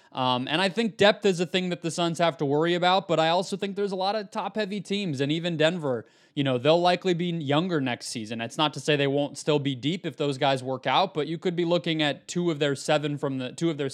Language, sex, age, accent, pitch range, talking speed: English, male, 20-39, American, 130-165 Hz, 285 wpm